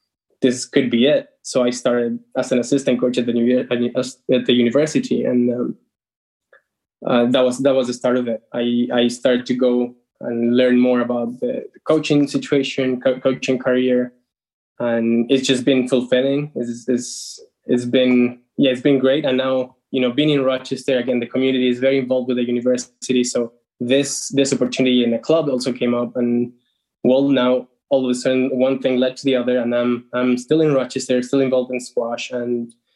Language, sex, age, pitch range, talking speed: English, male, 10-29, 120-135 Hz, 195 wpm